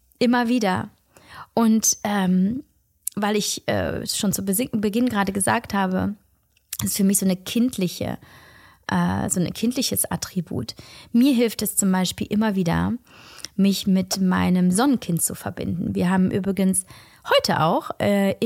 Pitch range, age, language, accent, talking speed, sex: 175-215 Hz, 20-39, German, German, 145 wpm, female